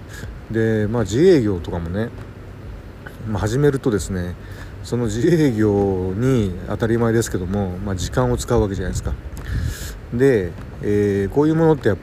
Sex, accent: male, native